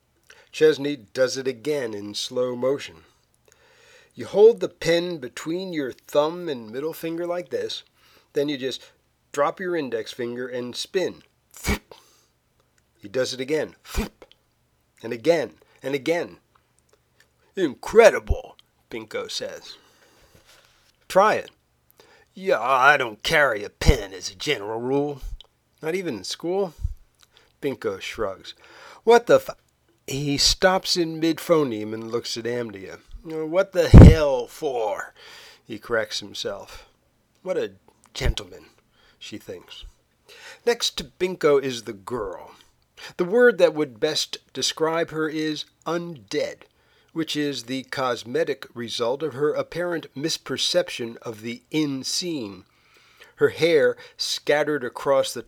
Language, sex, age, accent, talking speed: English, male, 50-69, American, 120 wpm